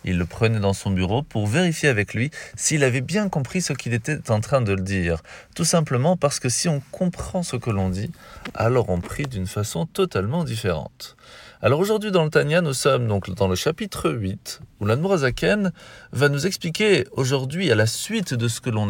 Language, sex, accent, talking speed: French, male, French, 205 wpm